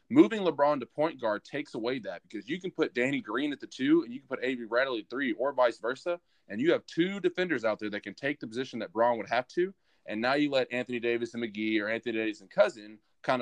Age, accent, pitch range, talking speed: 20-39, American, 115-160 Hz, 265 wpm